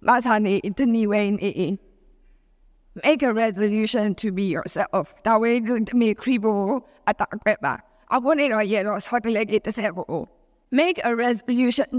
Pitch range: 205-255 Hz